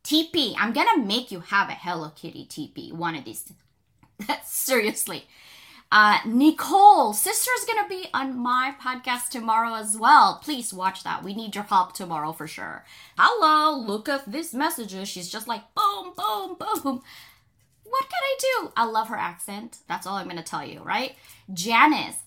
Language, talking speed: English, 180 wpm